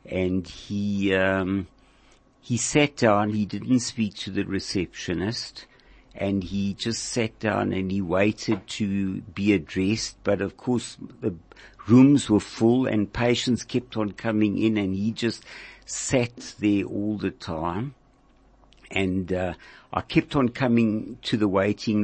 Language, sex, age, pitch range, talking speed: English, male, 60-79, 100-120 Hz, 145 wpm